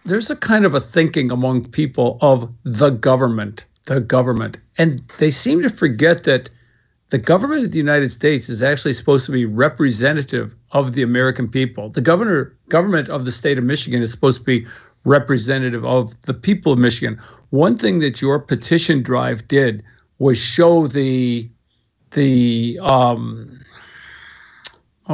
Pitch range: 125-160 Hz